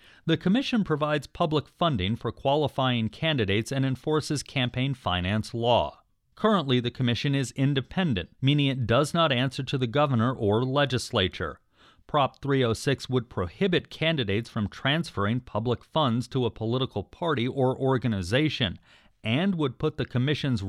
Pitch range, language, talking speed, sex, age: 110-145 Hz, English, 140 wpm, male, 40-59